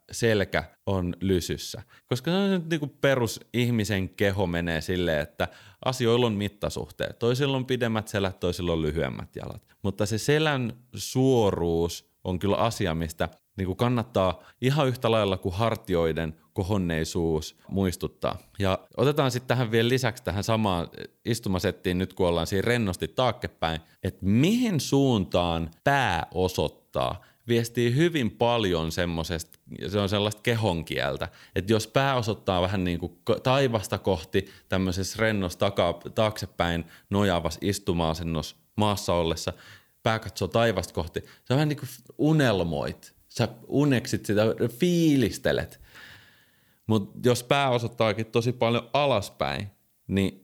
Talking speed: 125 wpm